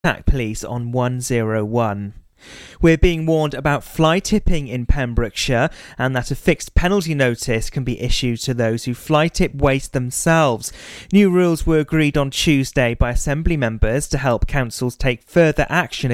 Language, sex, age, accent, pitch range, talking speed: English, male, 30-49, British, 125-155 Hz, 150 wpm